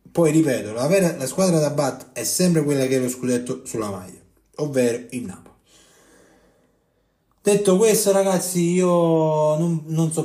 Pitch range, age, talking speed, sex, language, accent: 105-145 Hz, 30-49, 160 wpm, male, Italian, native